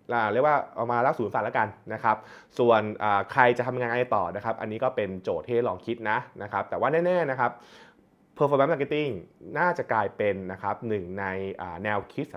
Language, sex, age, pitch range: Thai, male, 20-39, 105-135 Hz